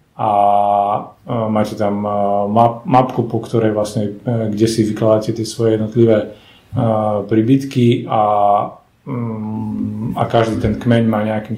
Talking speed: 110 wpm